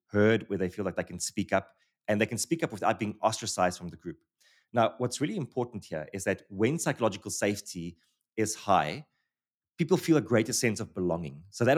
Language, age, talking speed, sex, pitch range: English, 20-39, 210 wpm, male, 95-125 Hz